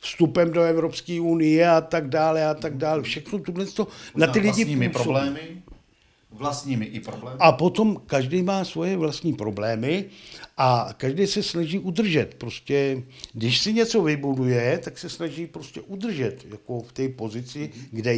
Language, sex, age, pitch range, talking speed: Czech, male, 60-79, 125-180 Hz, 155 wpm